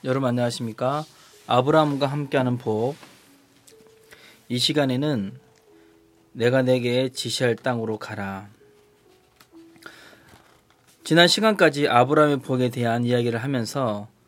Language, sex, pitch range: Korean, male, 115-150 Hz